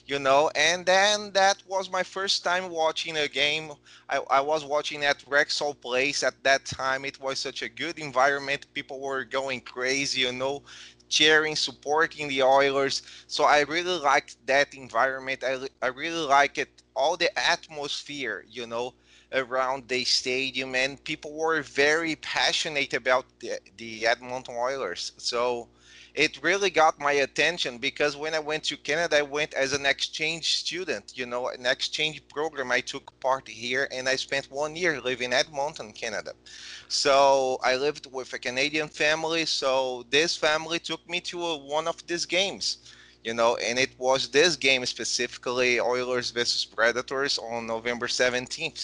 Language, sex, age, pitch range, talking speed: English, male, 20-39, 130-155 Hz, 165 wpm